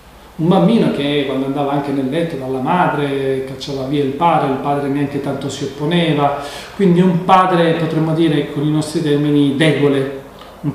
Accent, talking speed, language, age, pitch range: native, 175 wpm, Italian, 40-59, 140-175 Hz